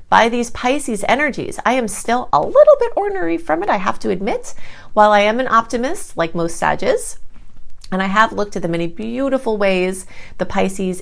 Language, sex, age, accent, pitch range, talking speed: English, female, 30-49, American, 165-220 Hz, 195 wpm